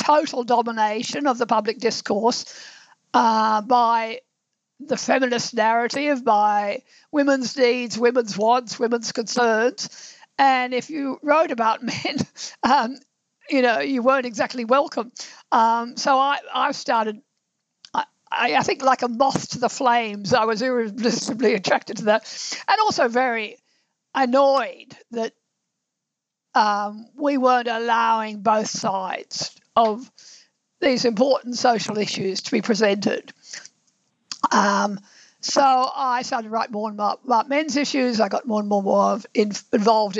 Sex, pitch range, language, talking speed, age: female, 220-265 Hz, English, 130 wpm, 50-69